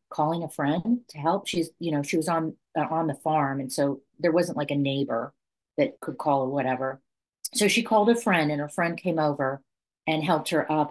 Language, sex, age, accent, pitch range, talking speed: English, female, 40-59, American, 145-185 Hz, 225 wpm